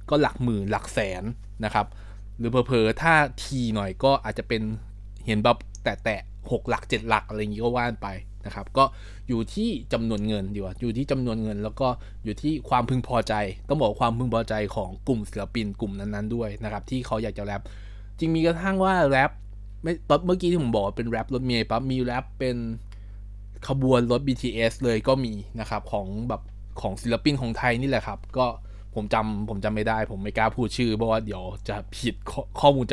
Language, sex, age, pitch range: Thai, male, 20-39, 105-130 Hz